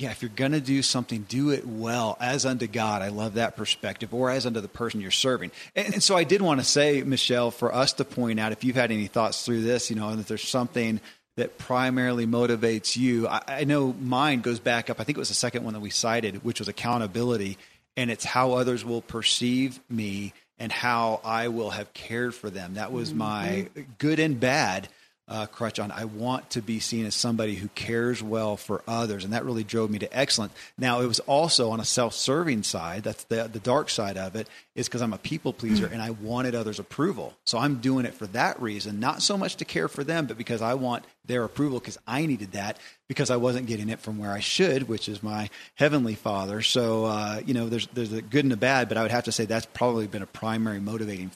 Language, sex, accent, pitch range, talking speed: English, male, American, 110-125 Hz, 240 wpm